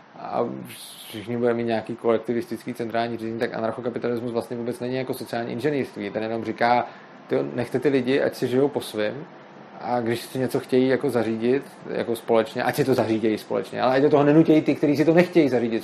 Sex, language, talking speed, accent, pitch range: male, Czech, 205 wpm, native, 125-160 Hz